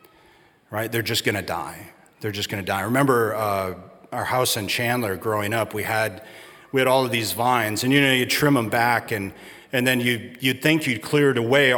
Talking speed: 215 wpm